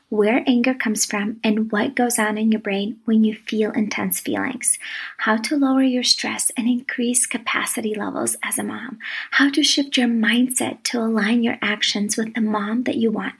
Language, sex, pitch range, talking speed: English, female, 215-260 Hz, 195 wpm